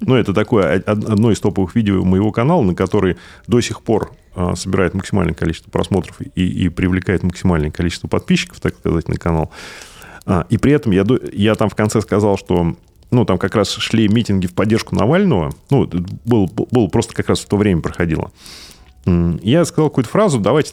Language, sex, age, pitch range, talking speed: Russian, male, 30-49, 85-110 Hz, 180 wpm